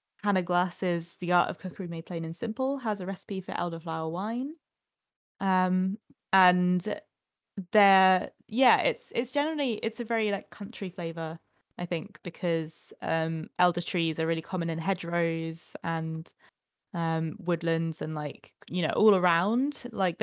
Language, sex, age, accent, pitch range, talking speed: English, female, 20-39, British, 165-200 Hz, 150 wpm